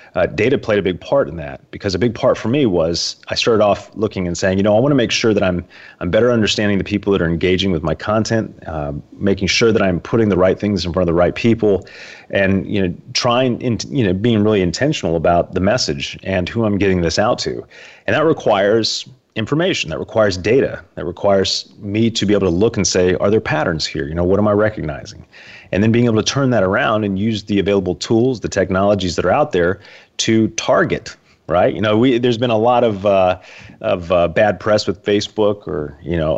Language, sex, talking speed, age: English, male, 235 wpm, 30-49